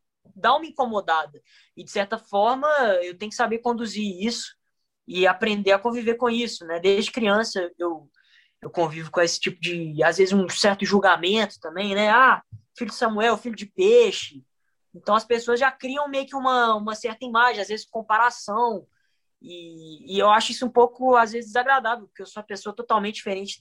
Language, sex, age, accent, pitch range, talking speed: Portuguese, female, 20-39, Brazilian, 180-230 Hz, 190 wpm